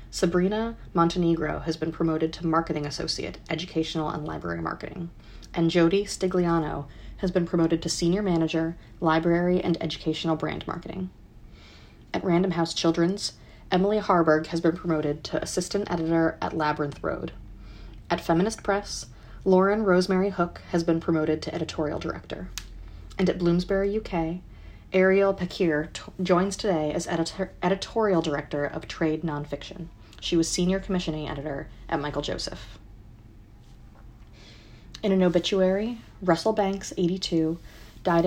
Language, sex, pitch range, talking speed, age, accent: English, female, 145-180 Hz, 130 wpm, 30-49, American